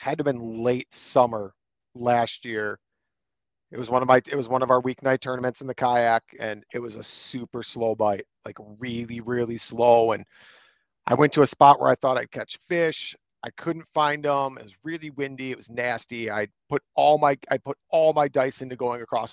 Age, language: 40-59, English